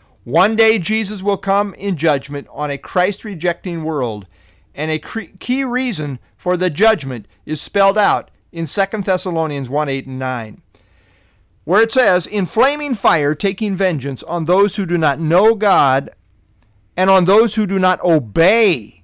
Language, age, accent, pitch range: English, 50-69, American, 120-195 Hz